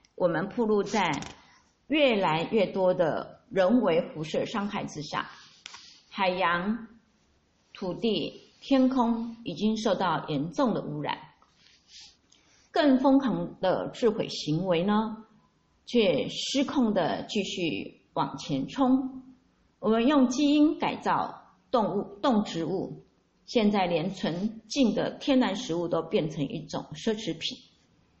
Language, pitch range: Chinese, 180-245 Hz